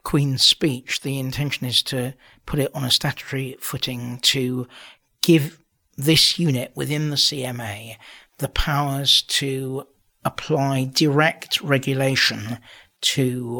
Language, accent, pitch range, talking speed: English, British, 125-145 Hz, 115 wpm